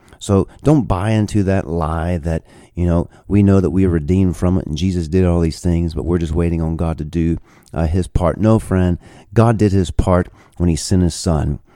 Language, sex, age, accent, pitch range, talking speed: English, male, 40-59, American, 80-100 Hz, 230 wpm